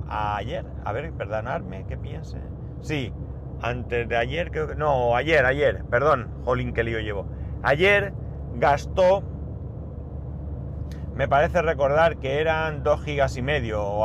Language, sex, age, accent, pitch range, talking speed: Spanish, male, 30-49, Spanish, 95-135 Hz, 140 wpm